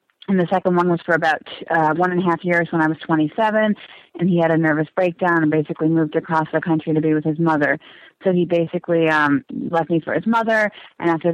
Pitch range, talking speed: 160-180 Hz, 240 wpm